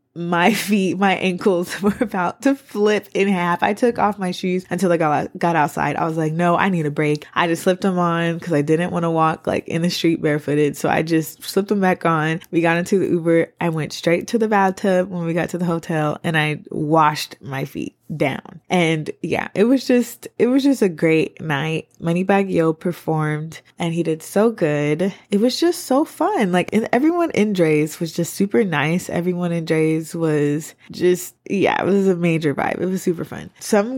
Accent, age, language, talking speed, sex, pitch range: American, 20-39, English, 215 wpm, female, 165-205 Hz